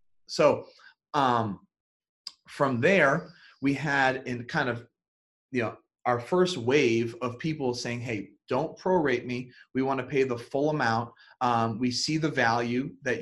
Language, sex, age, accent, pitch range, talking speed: English, male, 30-49, American, 120-150 Hz, 155 wpm